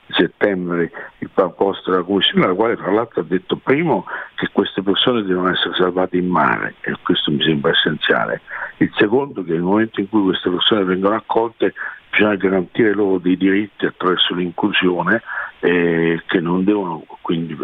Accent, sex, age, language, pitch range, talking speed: native, male, 60-79, Italian, 85-95 Hz, 165 wpm